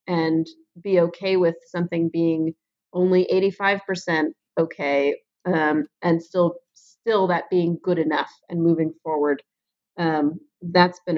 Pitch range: 165-190 Hz